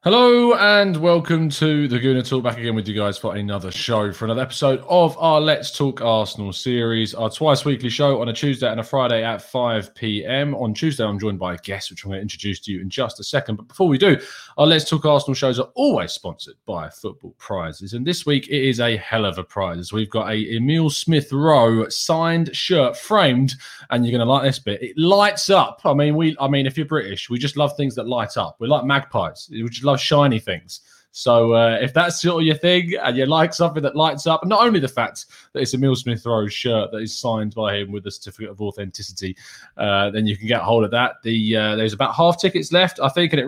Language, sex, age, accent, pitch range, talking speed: English, male, 20-39, British, 105-150 Hz, 245 wpm